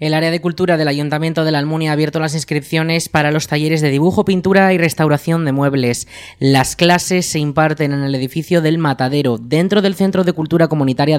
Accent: Spanish